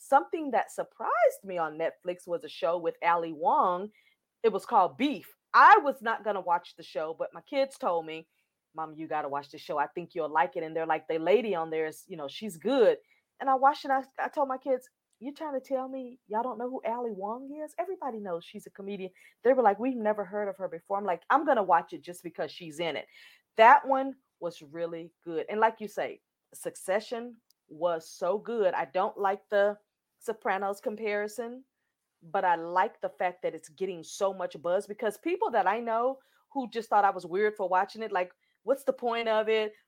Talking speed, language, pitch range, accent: 220 wpm, English, 170-240 Hz, American